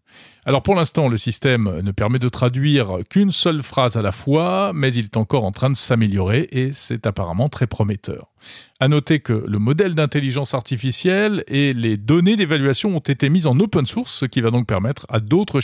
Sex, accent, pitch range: male, French, 110-155 Hz